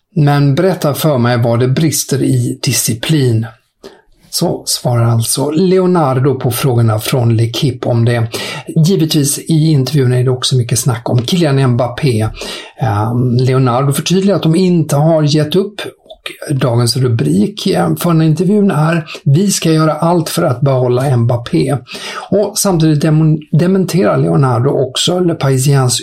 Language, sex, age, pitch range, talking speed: English, male, 50-69, 125-160 Hz, 140 wpm